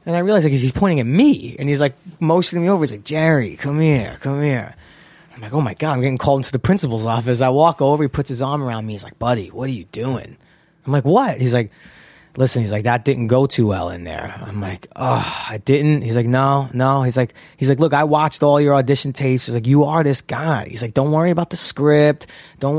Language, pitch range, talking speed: English, 130-160 Hz, 260 wpm